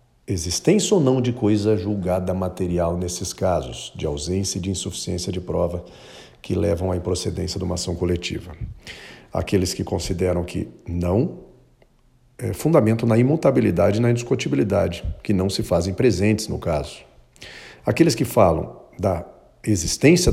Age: 40-59